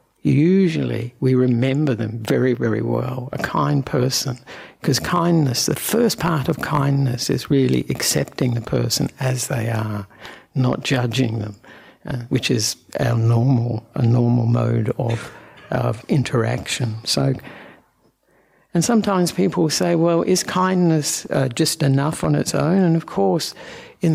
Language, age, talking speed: English, 60-79, 140 wpm